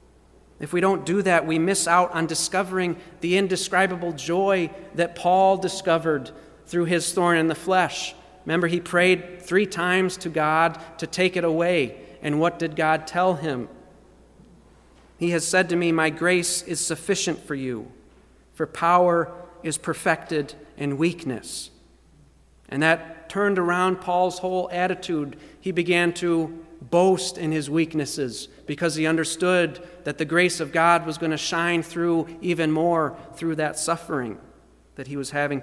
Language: English